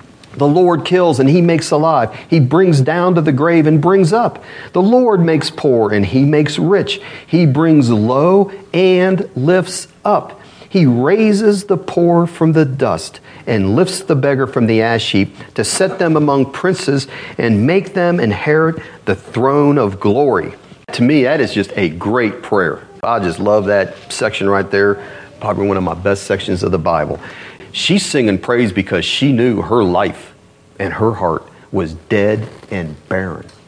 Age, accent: 40-59, American